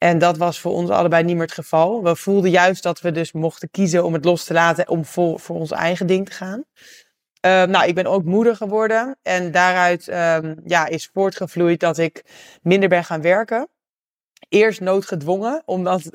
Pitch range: 170-195 Hz